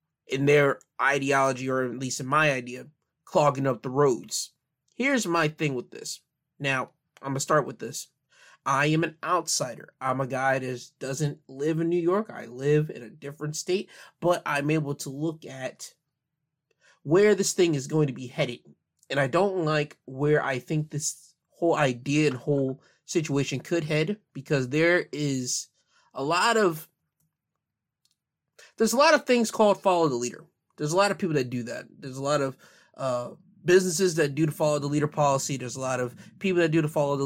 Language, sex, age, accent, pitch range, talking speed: English, male, 20-39, American, 130-165 Hz, 190 wpm